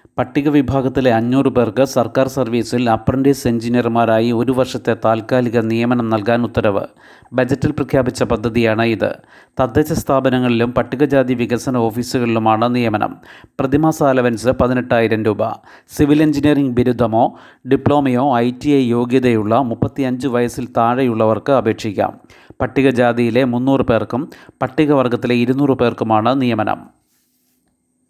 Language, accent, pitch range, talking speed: Malayalam, native, 115-135 Hz, 95 wpm